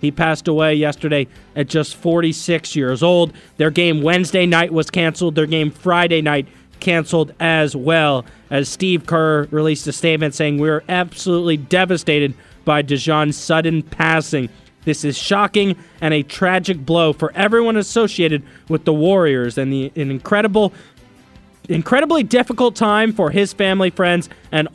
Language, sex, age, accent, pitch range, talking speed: English, male, 20-39, American, 155-205 Hz, 145 wpm